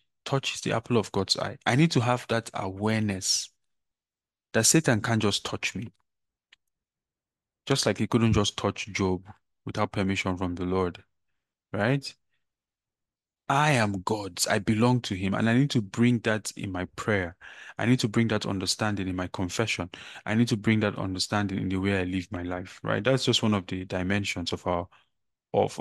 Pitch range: 95-115 Hz